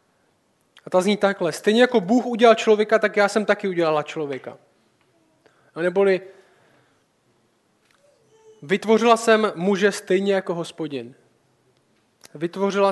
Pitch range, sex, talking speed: 170-205 Hz, male, 110 wpm